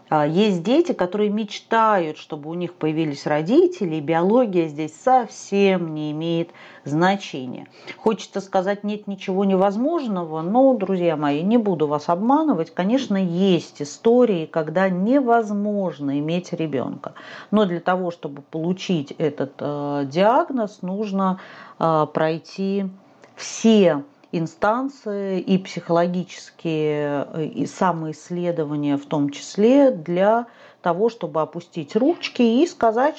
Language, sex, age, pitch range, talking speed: Russian, female, 40-59, 165-230 Hz, 110 wpm